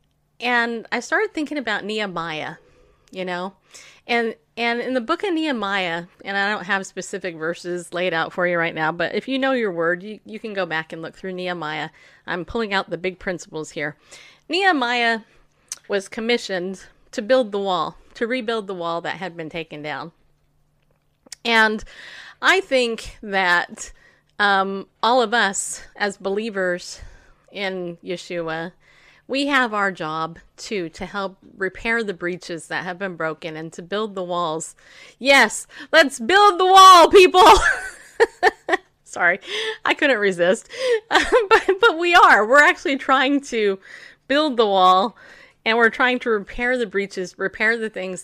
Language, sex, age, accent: English, female, 30-49, American